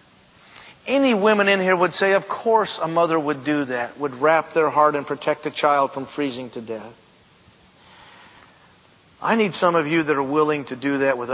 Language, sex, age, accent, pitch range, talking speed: English, male, 40-59, American, 145-190 Hz, 195 wpm